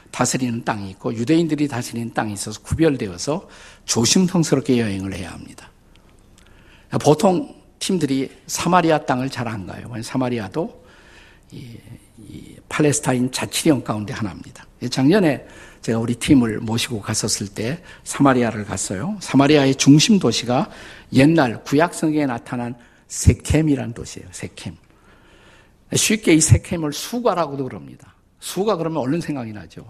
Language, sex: Korean, male